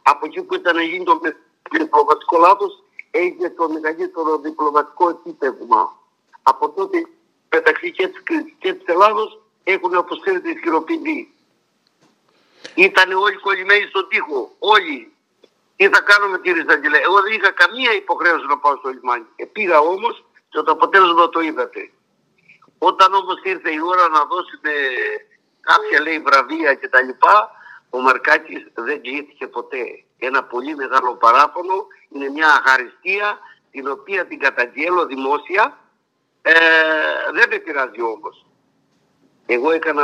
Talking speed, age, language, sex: 140 wpm, 60-79, Greek, male